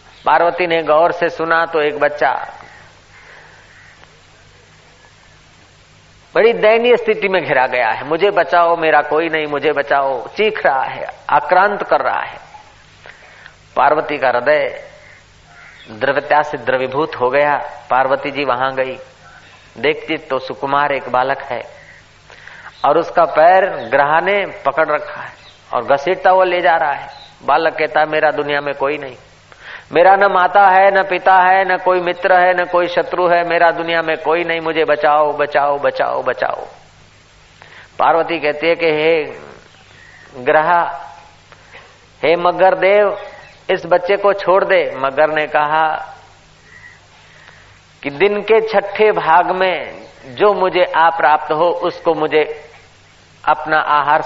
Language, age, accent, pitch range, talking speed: Hindi, 40-59, native, 140-175 Hz, 140 wpm